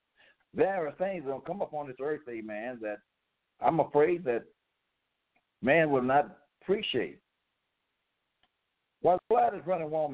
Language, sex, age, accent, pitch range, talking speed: English, male, 60-79, American, 135-180 Hz, 140 wpm